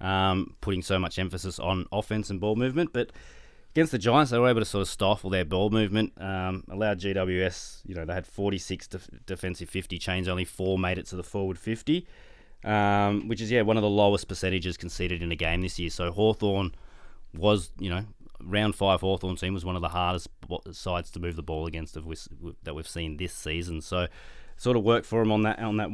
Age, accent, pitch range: 20-39, Australian, 85-105 Hz